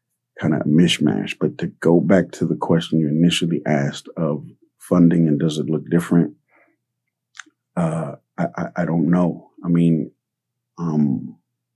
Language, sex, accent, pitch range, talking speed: English, male, American, 75-90 Hz, 155 wpm